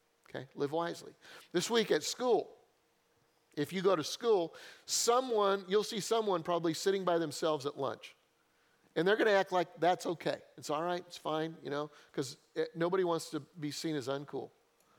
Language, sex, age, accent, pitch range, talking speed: English, male, 40-59, American, 160-205 Hz, 180 wpm